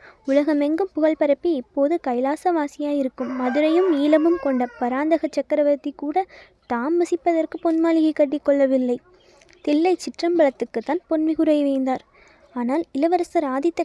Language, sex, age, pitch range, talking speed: Tamil, female, 20-39, 275-325 Hz, 95 wpm